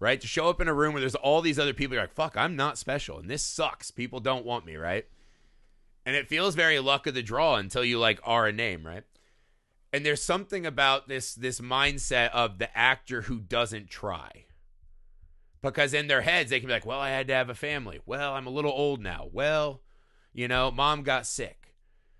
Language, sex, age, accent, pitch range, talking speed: English, male, 30-49, American, 105-135 Hz, 220 wpm